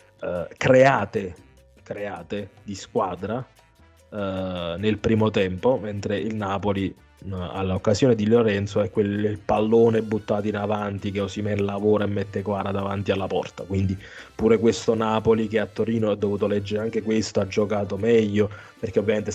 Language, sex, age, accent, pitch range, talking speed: Italian, male, 20-39, native, 100-110 Hz, 150 wpm